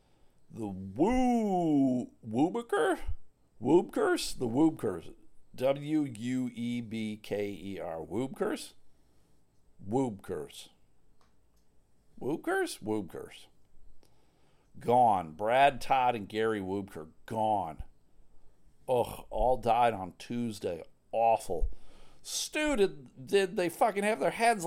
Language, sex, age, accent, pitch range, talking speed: English, male, 50-69, American, 105-145 Hz, 80 wpm